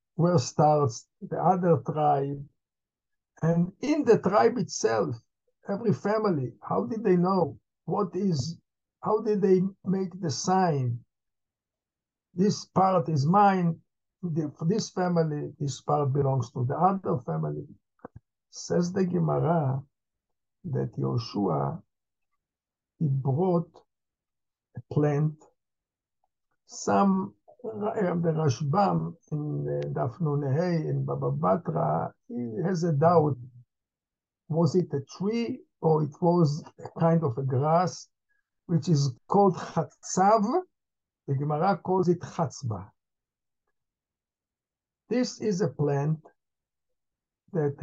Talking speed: 105 wpm